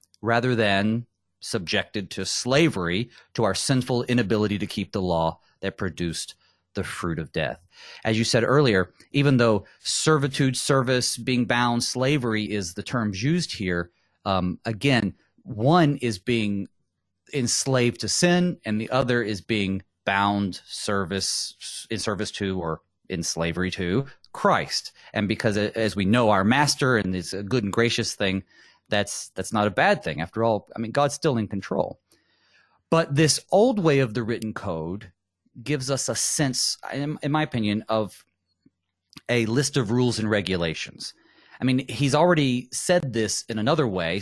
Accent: American